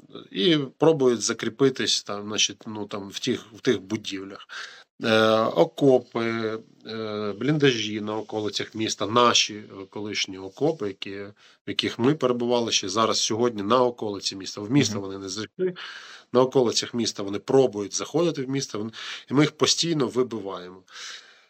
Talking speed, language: 145 wpm, Ukrainian